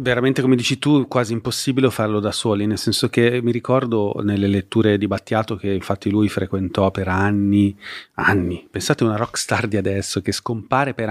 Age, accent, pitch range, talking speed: 30-49, native, 100-120 Hz, 185 wpm